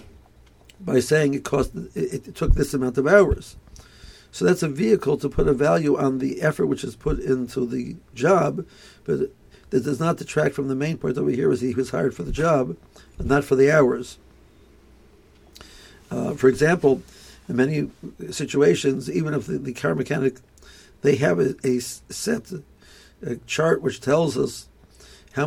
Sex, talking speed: male, 175 wpm